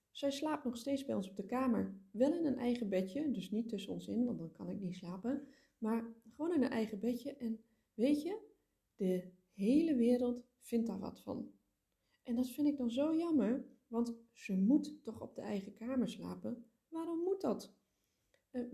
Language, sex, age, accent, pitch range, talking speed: Dutch, female, 20-39, Dutch, 195-260 Hz, 195 wpm